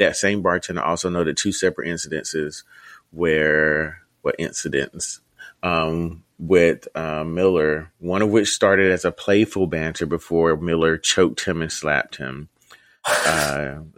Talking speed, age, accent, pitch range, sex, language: 135 wpm, 30-49, American, 80-100 Hz, male, English